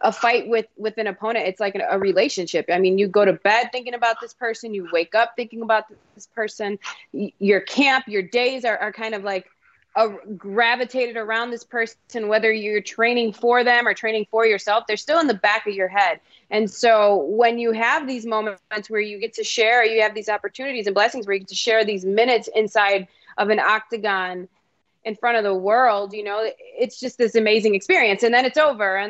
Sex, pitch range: female, 200-235 Hz